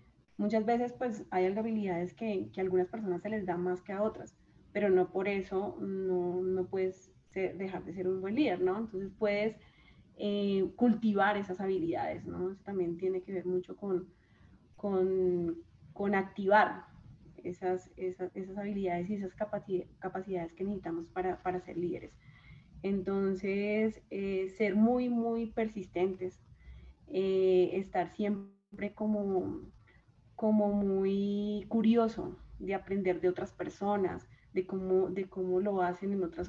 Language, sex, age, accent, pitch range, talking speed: Spanish, female, 20-39, Colombian, 180-205 Hz, 140 wpm